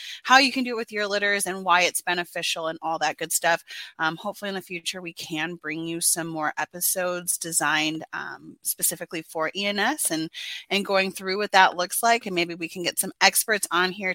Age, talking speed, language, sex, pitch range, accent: 30-49, 215 wpm, English, female, 175-225 Hz, American